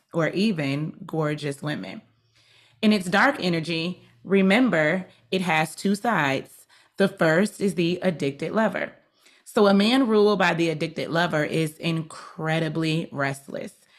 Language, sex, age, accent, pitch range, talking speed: English, female, 30-49, American, 155-195 Hz, 130 wpm